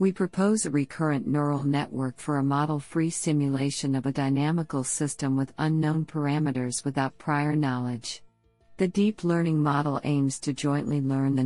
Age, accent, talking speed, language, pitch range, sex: 50-69, American, 150 wpm, English, 135-160 Hz, female